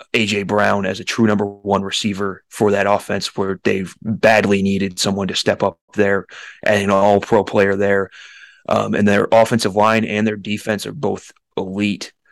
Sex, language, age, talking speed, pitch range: male, English, 20-39, 175 wpm, 100-115 Hz